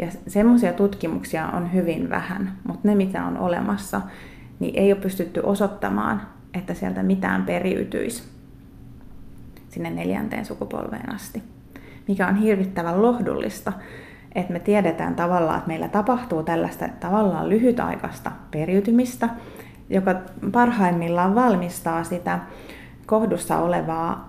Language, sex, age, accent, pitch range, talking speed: Finnish, female, 30-49, native, 170-210 Hz, 110 wpm